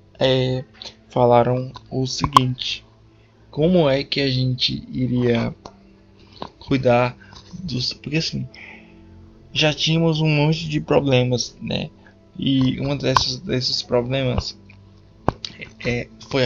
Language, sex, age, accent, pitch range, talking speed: Portuguese, male, 20-39, Brazilian, 115-135 Hz, 100 wpm